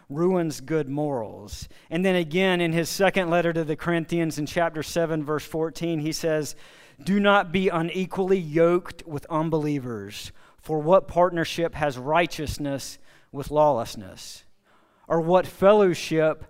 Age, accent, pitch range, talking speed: 50-69, American, 135-165 Hz, 135 wpm